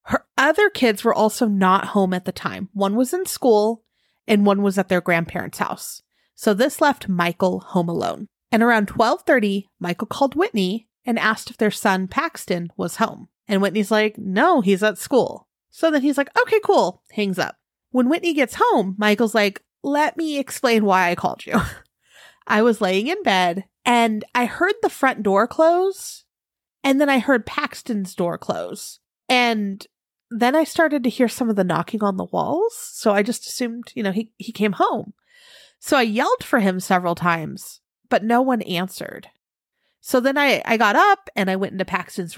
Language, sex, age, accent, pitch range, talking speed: English, female, 30-49, American, 195-265 Hz, 190 wpm